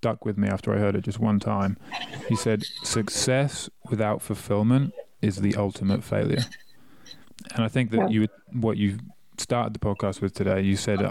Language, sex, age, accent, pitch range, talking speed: English, male, 20-39, British, 105-120 Hz, 185 wpm